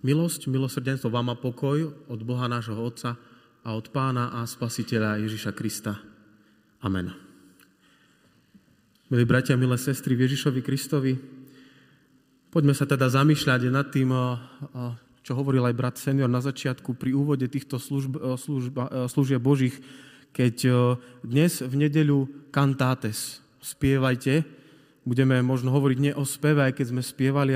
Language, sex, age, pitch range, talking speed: Slovak, male, 30-49, 125-145 Hz, 130 wpm